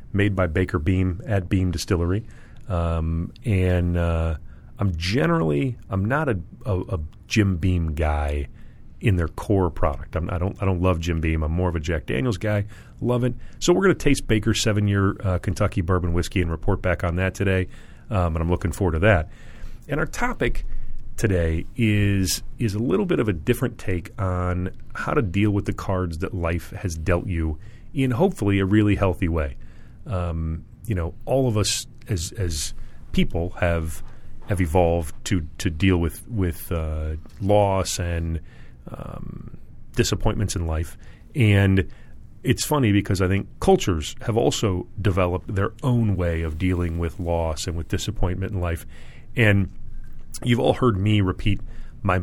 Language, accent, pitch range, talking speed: English, American, 85-110 Hz, 170 wpm